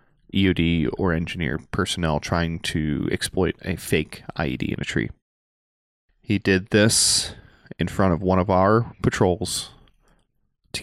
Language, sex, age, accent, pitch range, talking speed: English, male, 30-49, American, 80-105 Hz, 135 wpm